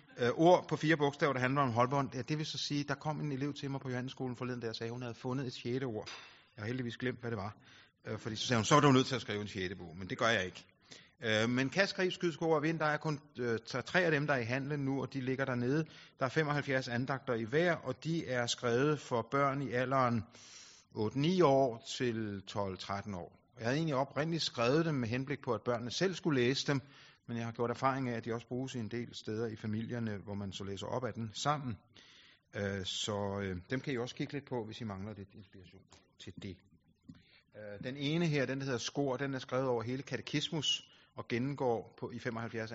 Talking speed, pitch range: 235 wpm, 105-140 Hz